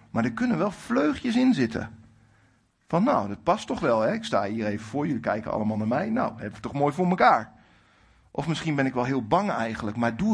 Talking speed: 230 wpm